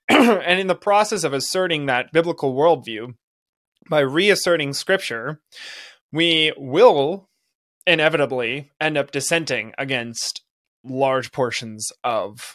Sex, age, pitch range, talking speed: male, 20-39, 130-170 Hz, 105 wpm